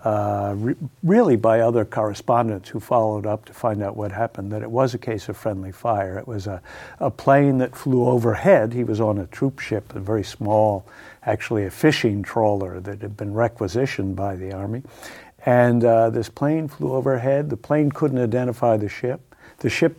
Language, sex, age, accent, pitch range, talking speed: English, male, 60-79, American, 105-125 Hz, 190 wpm